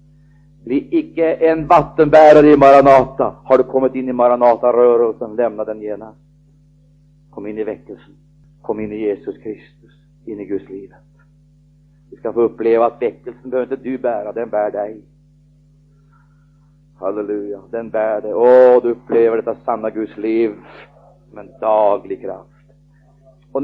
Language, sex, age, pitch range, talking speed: Swedish, male, 40-59, 115-145 Hz, 145 wpm